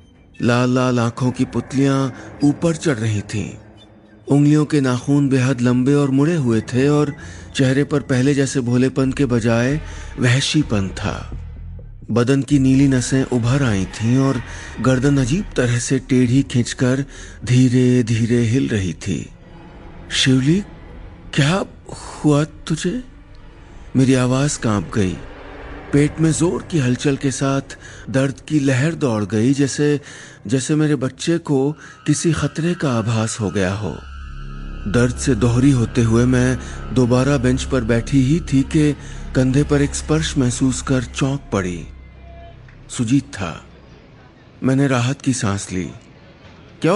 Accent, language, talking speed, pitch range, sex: native, Hindi, 140 wpm, 115-145 Hz, male